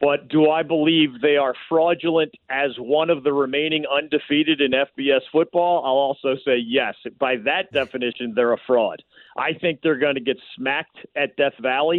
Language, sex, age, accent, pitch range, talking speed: English, male, 40-59, American, 125-150 Hz, 180 wpm